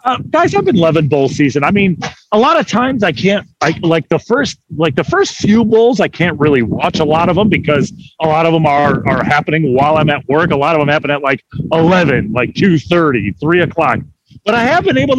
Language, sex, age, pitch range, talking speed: English, male, 40-59, 155-230 Hz, 245 wpm